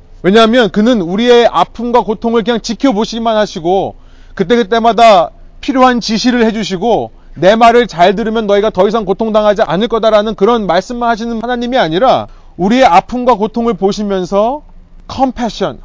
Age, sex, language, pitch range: 30-49, male, Korean, 170-235 Hz